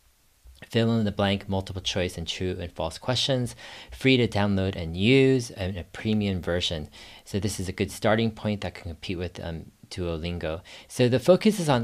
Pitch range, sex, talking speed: 90-110 Hz, male, 195 wpm